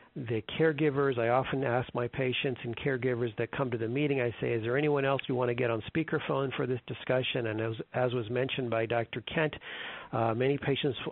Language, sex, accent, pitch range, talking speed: English, male, American, 120-145 Hz, 215 wpm